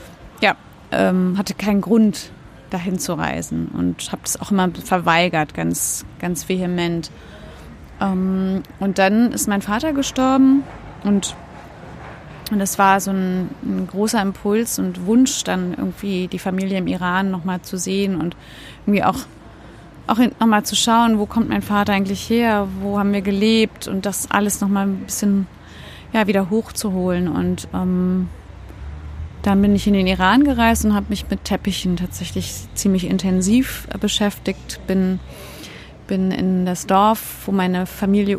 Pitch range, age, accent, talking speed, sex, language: 180-210 Hz, 30-49, German, 150 wpm, female, German